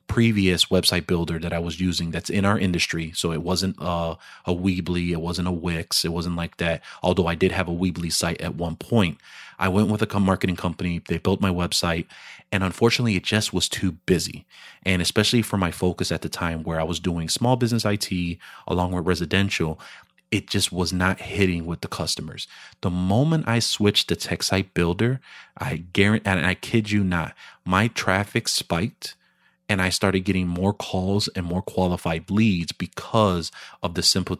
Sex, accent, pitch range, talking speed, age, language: male, American, 85-100 Hz, 190 wpm, 30-49, English